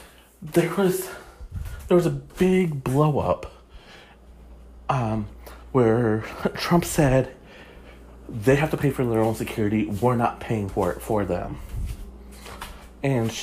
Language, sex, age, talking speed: English, male, 30-49, 125 wpm